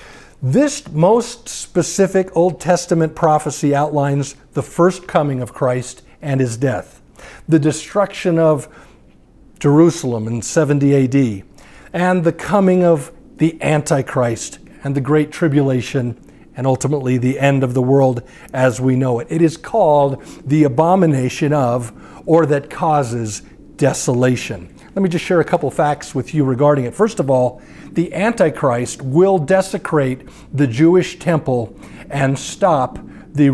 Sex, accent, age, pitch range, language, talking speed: male, American, 50-69, 135-170 Hz, English, 140 wpm